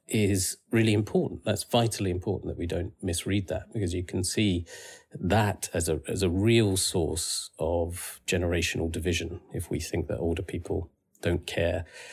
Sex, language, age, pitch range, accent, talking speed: male, English, 40-59, 85-105 Hz, British, 160 wpm